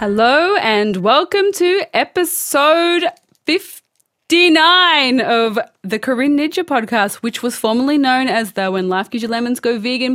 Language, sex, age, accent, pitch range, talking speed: English, female, 20-39, Australian, 205-260 Hz, 140 wpm